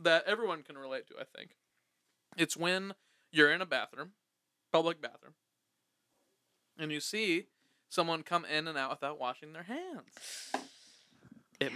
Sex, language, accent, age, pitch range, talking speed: male, English, American, 20-39, 145-240 Hz, 145 wpm